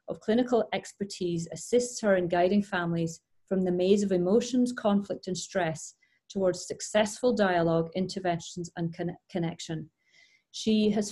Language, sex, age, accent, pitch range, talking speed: English, female, 40-59, British, 180-220 Hz, 125 wpm